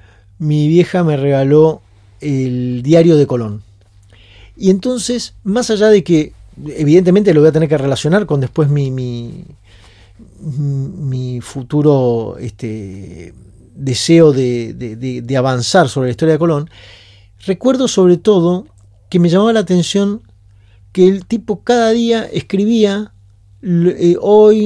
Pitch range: 120-175 Hz